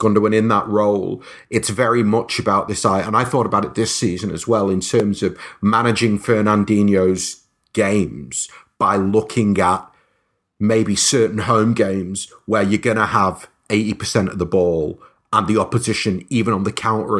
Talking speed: 170 wpm